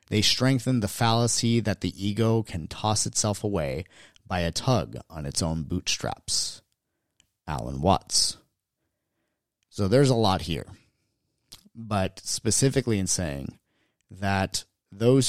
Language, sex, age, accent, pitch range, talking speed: English, male, 30-49, American, 95-125 Hz, 120 wpm